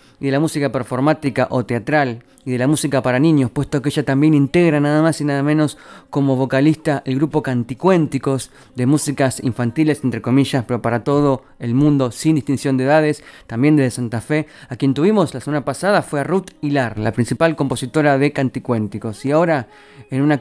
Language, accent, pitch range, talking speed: Spanish, Argentinian, 130-165 Hz, 190 wpm